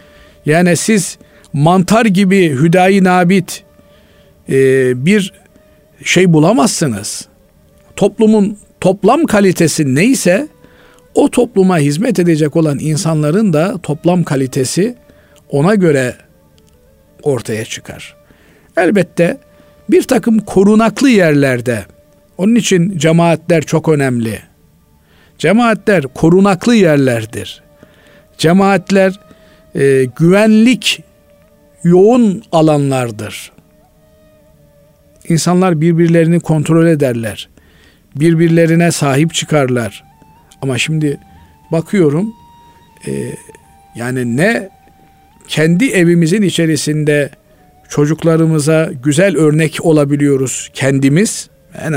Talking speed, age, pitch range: 75 wpm, 50-69, 135-190 Hz